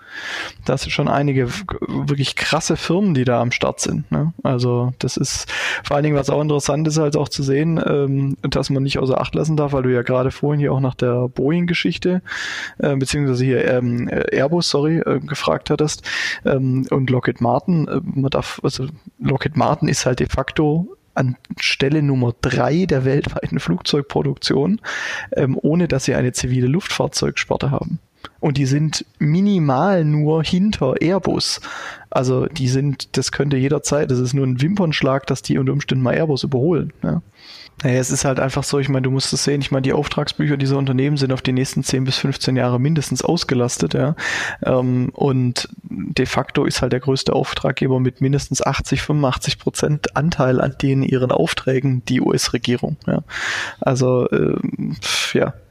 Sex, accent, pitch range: male, German, 130-150 Hz